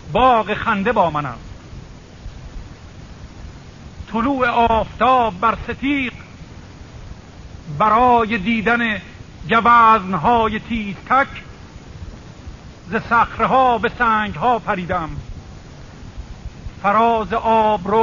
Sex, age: male, 50-69